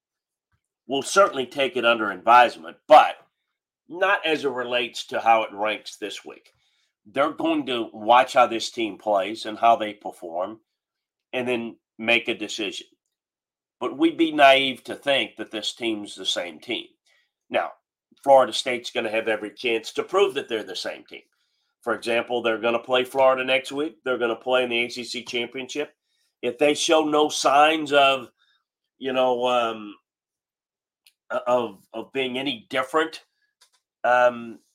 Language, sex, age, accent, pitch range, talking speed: English, male, 40-59, American, 115-140 Hz, 160 wpm